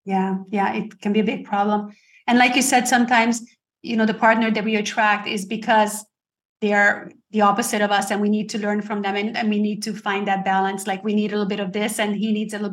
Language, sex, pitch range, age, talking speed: English, female, 205-230 Hz, 30-49, 265 wpm